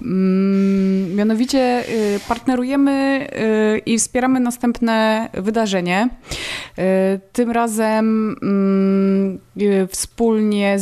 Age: 20-39